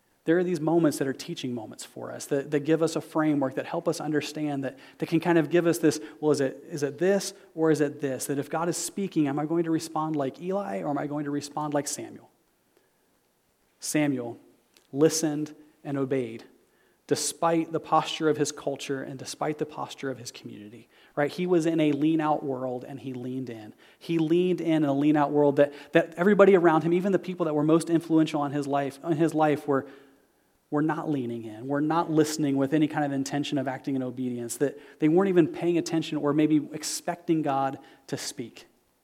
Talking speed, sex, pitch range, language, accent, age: 215 wpm, male, 140-160 Hz, English, American, 30-49